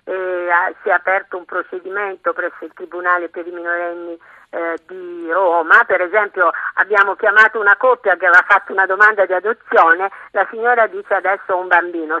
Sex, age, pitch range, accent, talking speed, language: female, 50-69, 175-215 Hz, native, 170 wpm, Italian